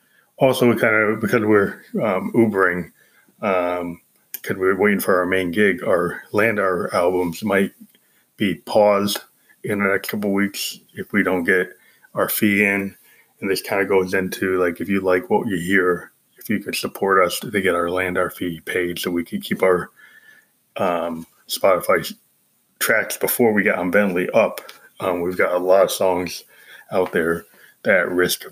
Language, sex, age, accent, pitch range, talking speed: English, male, 20-39, American, 90-105 Hz, 180 wpm